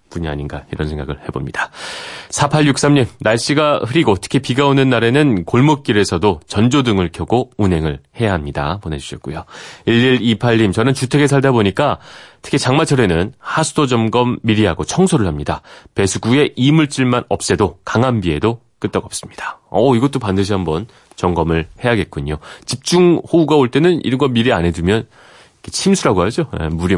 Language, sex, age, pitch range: Korean, male, 30-49, 90-135 Hz